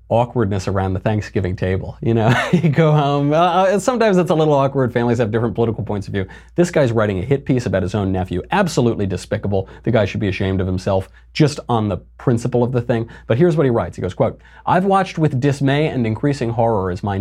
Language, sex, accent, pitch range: English, male, American, 95-145 Hz